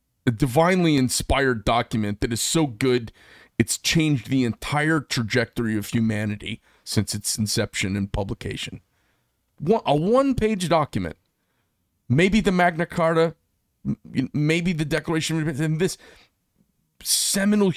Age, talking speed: 40-59, 120 wpm